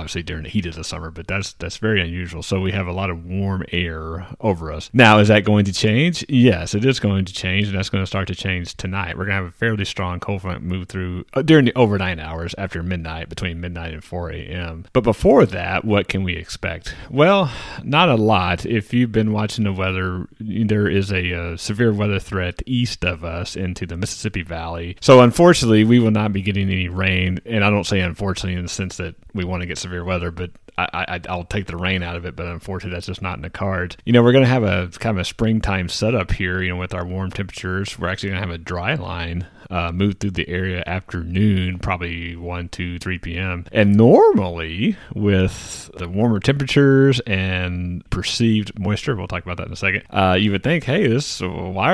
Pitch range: 90-110 Hz